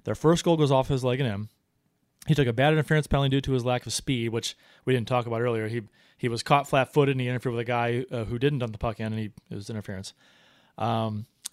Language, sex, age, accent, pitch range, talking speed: English, male, 30-49, American, 120-150 Hz, 265 wpm